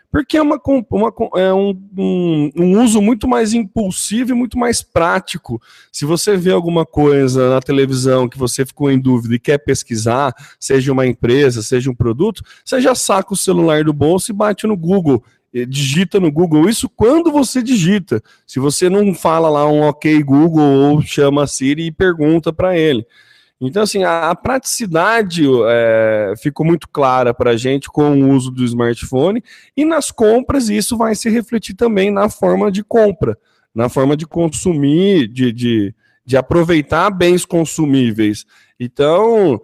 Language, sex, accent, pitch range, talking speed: Portuguese, male, Brazilian, 130-200 Hz, 165 wpm